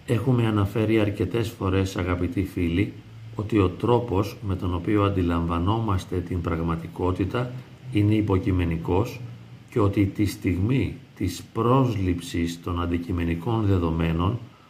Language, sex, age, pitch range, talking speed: Greek, male, 40-59, 95-130 Hz, 105 wpm